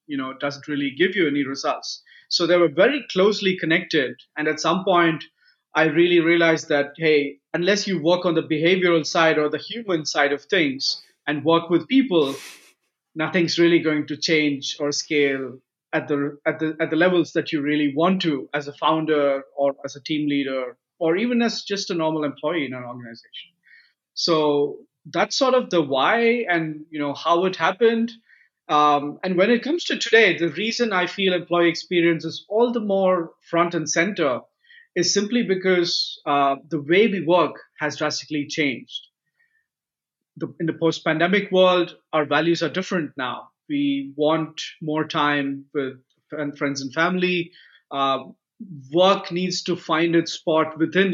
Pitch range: 145-185 Hz